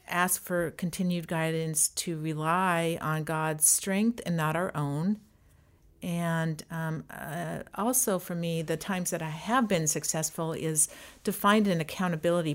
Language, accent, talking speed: English, American, 150 wpm